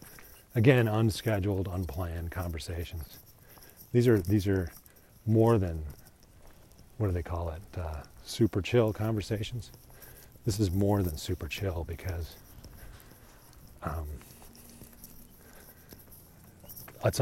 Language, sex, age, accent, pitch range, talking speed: English, male, 40-59, American, 85-115 Hz, 95 wpm